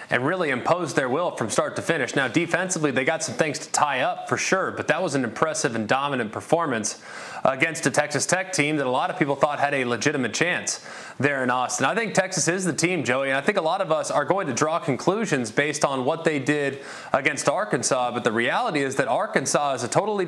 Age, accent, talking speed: 30-49, American, 240 wpm